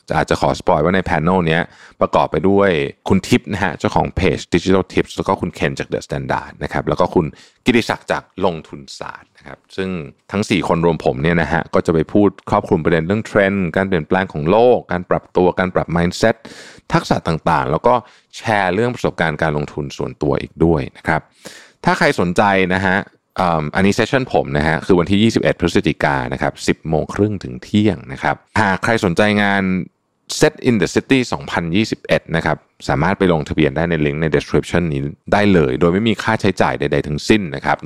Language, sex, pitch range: Thai, male, 75-100 Hz